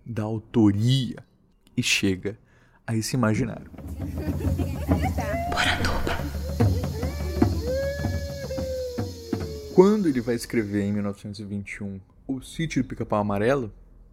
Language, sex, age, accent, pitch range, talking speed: Portuguese, male, 20-39, Brazilian, 100-120 Hz, 75 wpm